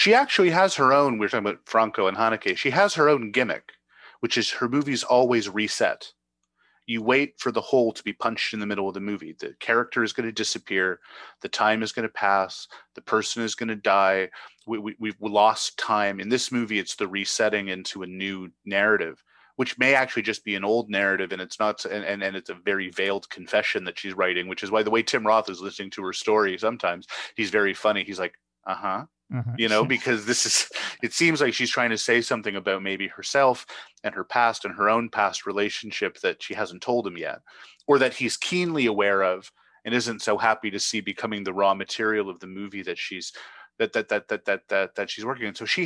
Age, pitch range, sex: 30-49, 100-115 Hz, male